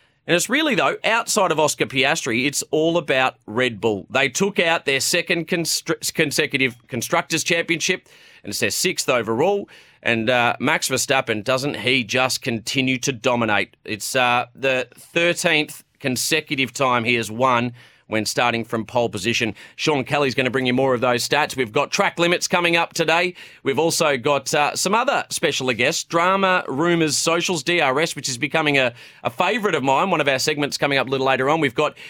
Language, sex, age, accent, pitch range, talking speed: English, male, 30-49, Australian, 120-155 Hz, 185 wpm